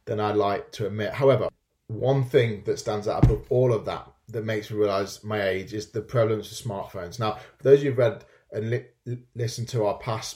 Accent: British